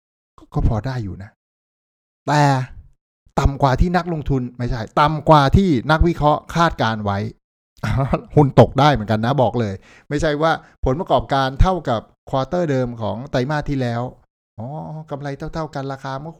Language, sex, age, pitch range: Thai, male, 60-79, 110-145 Hz